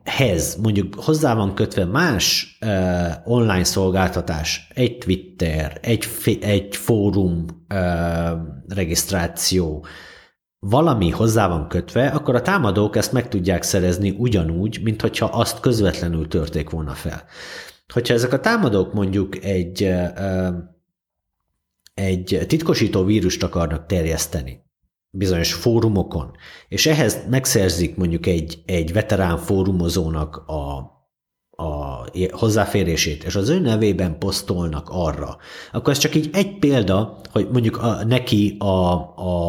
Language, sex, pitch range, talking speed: Hungarian, male, 85-105 Hz, 115 wpm